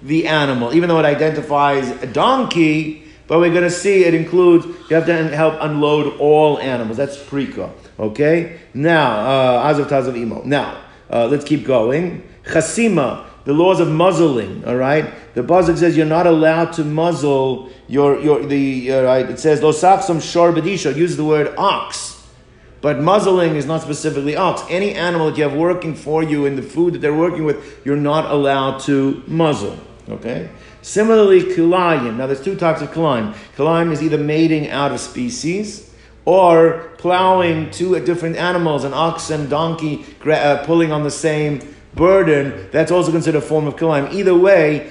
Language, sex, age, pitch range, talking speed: English, male, 50-69, 145-170 Hz, 170 wpm